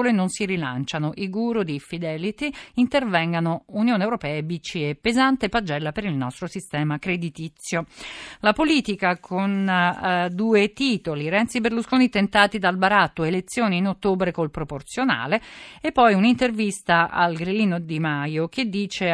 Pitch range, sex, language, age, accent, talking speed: 160-215 Hz, female, Italian, 40-59, native, 135 wpm